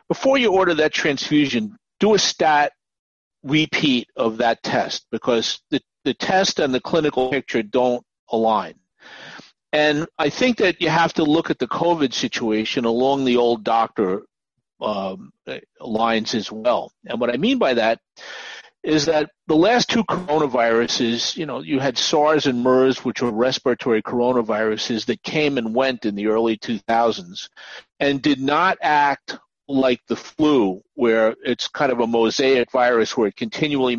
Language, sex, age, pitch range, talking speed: English, male, 50-69, 115-155 Hz, 160 wpm